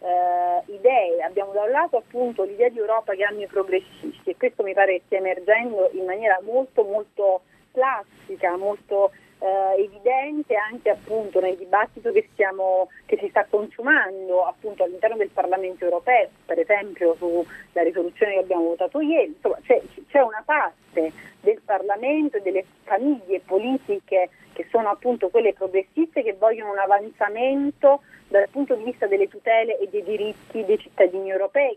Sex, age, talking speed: female, 40-59, 160 wpm